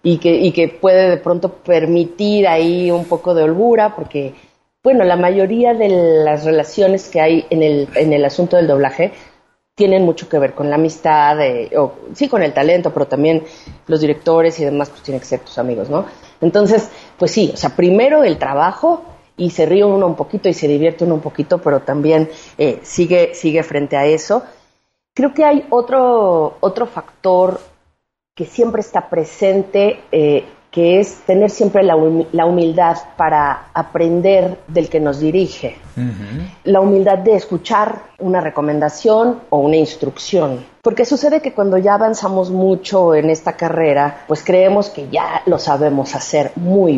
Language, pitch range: Spanish, 160-215 Hz